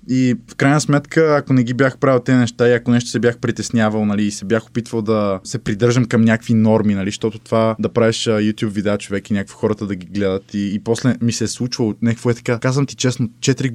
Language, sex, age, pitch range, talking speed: Bulgarian, male, 20-39, 105-120 Hz, 245 wpm